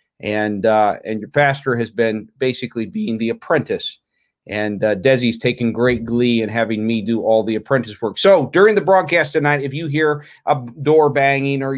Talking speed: 190 wpm